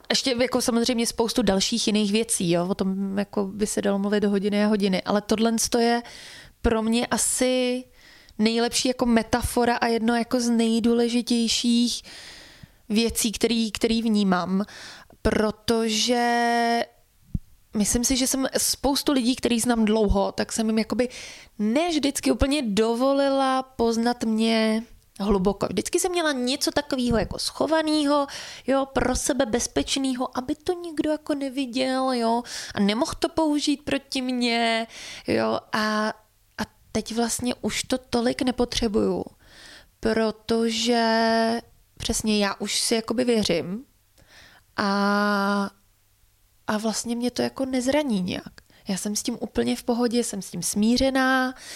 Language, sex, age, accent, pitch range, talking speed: Czech, female, 20-39, native, 215-255 Hz, 135 wpm